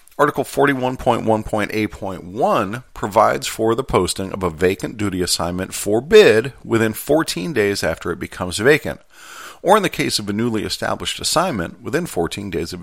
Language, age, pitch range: English, 40-59, 95-120 Hz